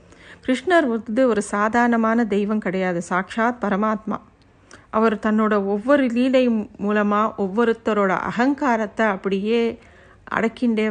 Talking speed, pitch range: 95 wpm, 205-245 Hz